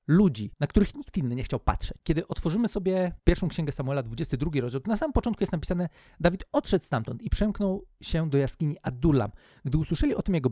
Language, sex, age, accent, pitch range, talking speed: Polish, male, 40-59, native, 150-195 Hz, 205 wpm